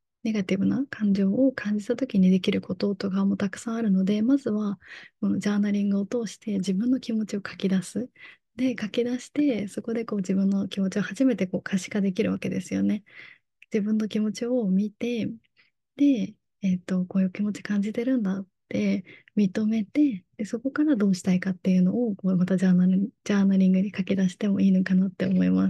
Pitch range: 190-220 Hz